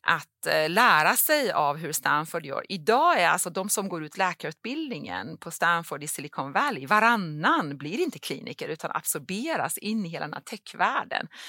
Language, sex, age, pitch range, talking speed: Swedish, female, 40-59, 145-205 Hz, 165 wpm